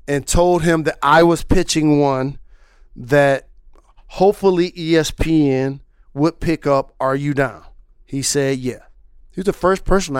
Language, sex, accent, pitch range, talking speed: English, male, American, 125-170 Hz, 145 wpm